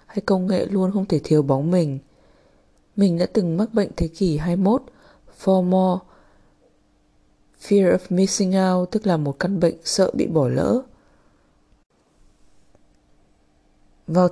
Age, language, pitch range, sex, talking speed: 20-39, Vietnamese, 155-195 Hz, female, 140 wpm